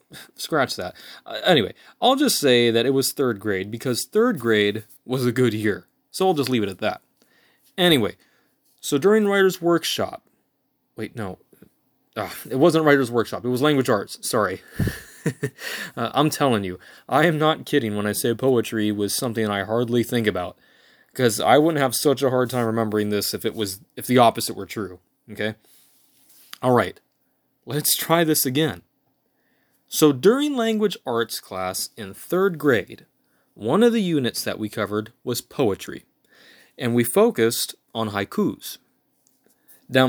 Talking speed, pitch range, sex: 160 wpm, 105-160 Hz, male